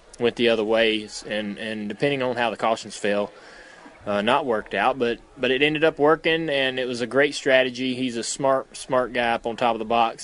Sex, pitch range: male, 110-125 Hz